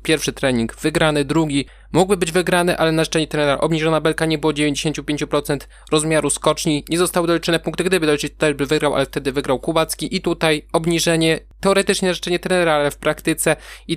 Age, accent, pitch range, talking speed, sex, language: 20-39, native, 145-170 Hz, 180 wpm, male, Polish